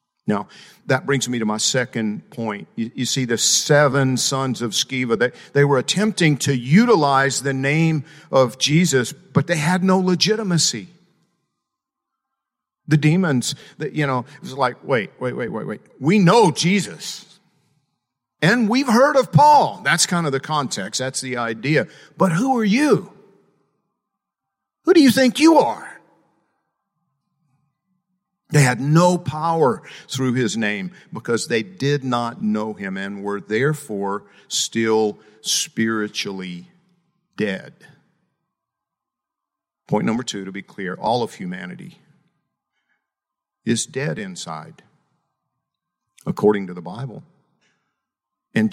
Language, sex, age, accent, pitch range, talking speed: English, male, 50-69, American, 130-185 Hz, 130 wpm